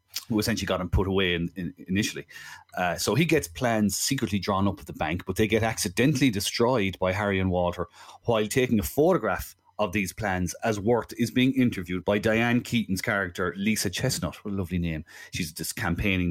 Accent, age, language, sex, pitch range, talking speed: Irish, 30-49, English, male, 95-115 Hz, 200 wpm